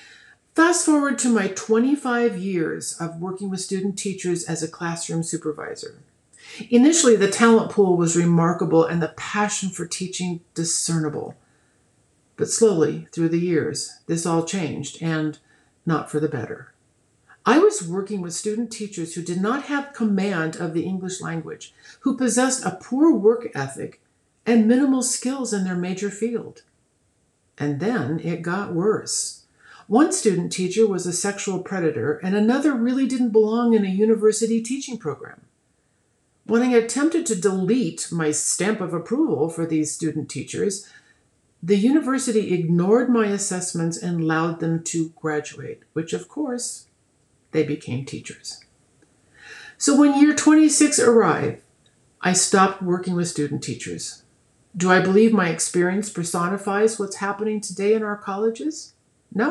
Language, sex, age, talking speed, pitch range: English, female, 50-69, 145 wpm, 165-225 Hz